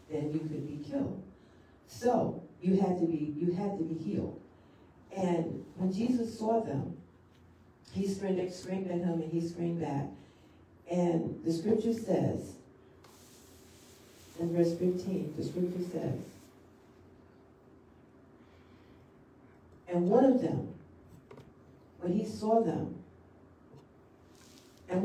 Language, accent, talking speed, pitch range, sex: English, American, 115 wpm, 155-200 Hz, female